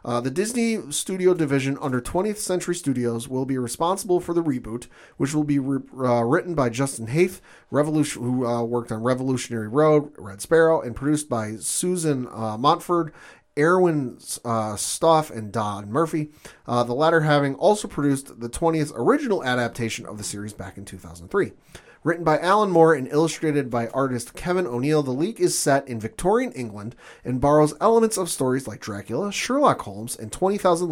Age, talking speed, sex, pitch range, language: 30-49, 170 wpm, male, 120-170 Hz, English